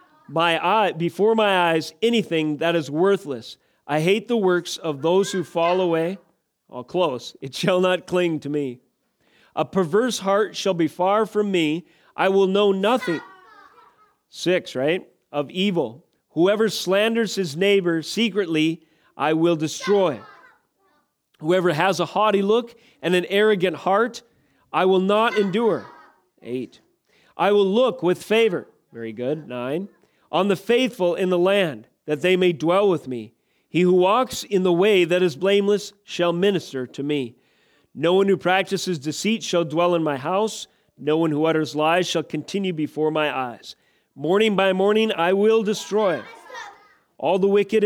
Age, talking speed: 40-59, 160 wpm